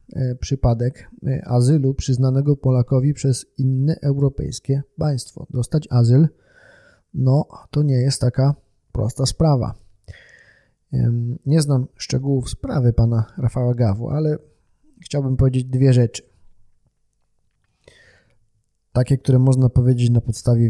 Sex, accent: male, native